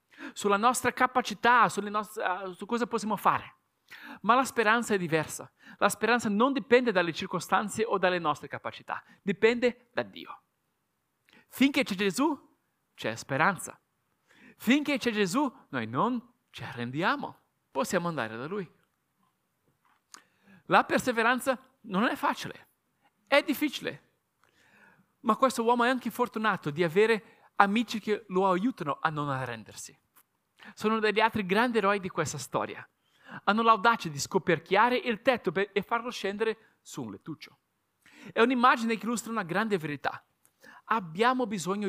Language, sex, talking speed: Italian, male, 135 wpm